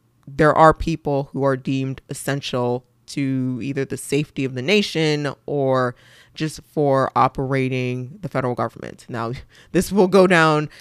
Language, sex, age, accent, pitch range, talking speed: English, female, 20-39, American, 125-155 Hz, 145 wpm